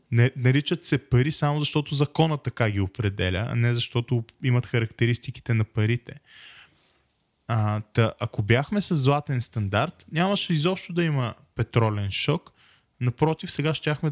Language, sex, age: Bulgarian, male, 20-39